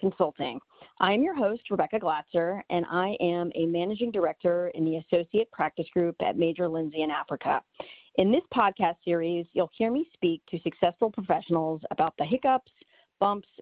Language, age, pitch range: English, 40-59, 170-220 Hz